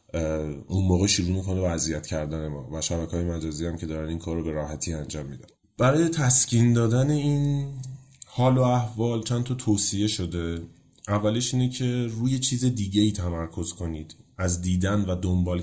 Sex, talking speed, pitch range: male, 170 wpm, 80-100 Hz